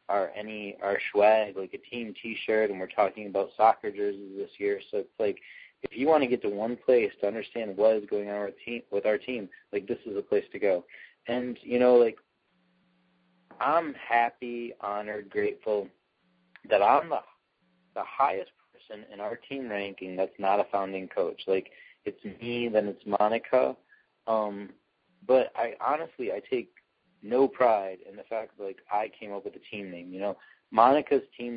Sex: male